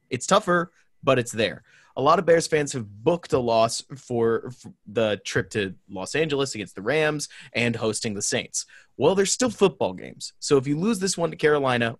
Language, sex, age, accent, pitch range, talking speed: English, male, 30-49, American, 115-145 Hz, 200 wpm